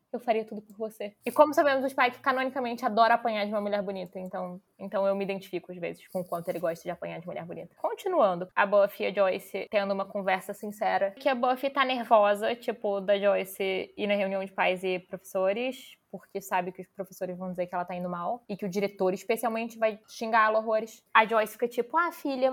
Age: 10-29